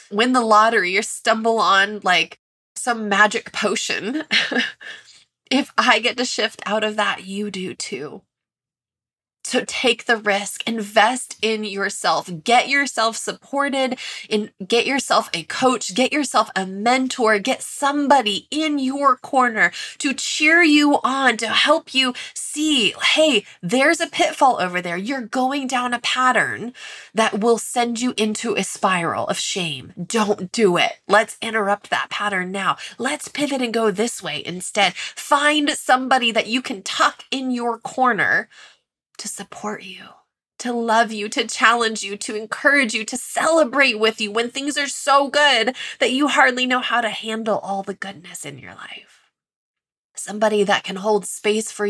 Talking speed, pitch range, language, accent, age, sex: 160 wpm, 200-255 Hz, English, American, 20-39, female